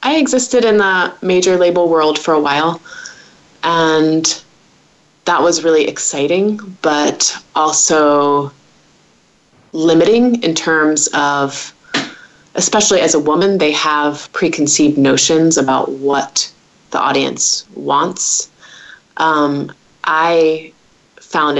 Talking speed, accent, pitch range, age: 105 wpm, American, 150-180 Hz, 20-39